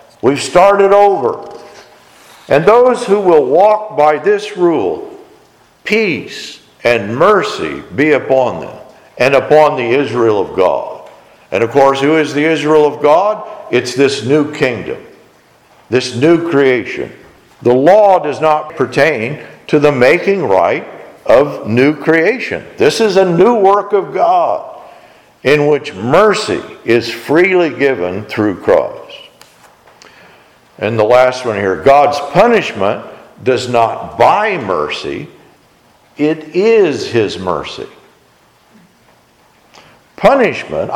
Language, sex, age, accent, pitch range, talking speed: English, male, 50-69, American, 140-205 Hz, 120 wpm